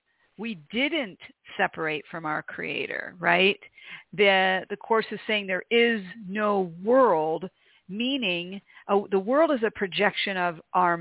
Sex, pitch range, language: female, 175-230 Hz, English